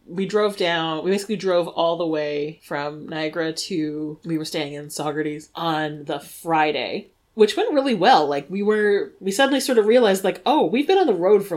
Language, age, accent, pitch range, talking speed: English, 30-49, American, 155-205 Hz, 205 wpm